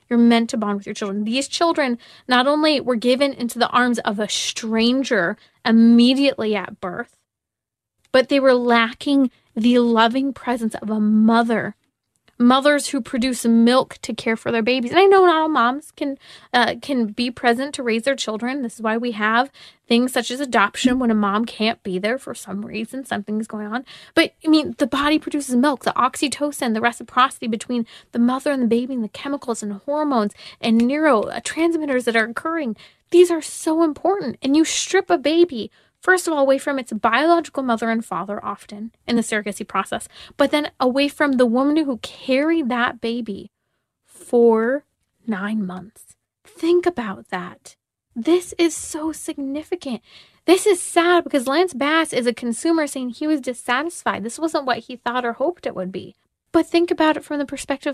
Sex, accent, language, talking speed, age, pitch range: female, American, English, 185 wpm, 20-39, 230-295 Hz